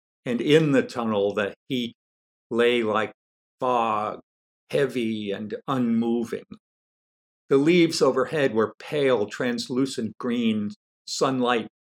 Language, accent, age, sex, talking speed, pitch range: English, American, 50-69, male, 100 wpm, 110-130 Hz